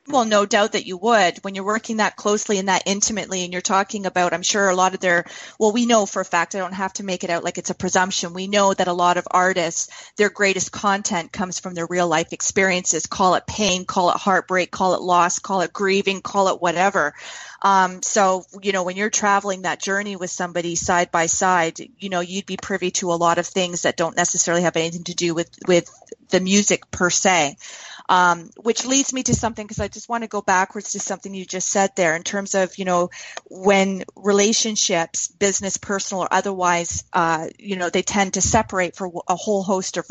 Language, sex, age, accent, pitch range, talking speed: English, female, 30-49, American, 180-205 Hz, 225 wpm